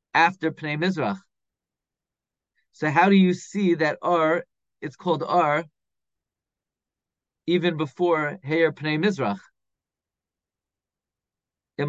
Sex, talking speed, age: male, 95 wpm, 40-59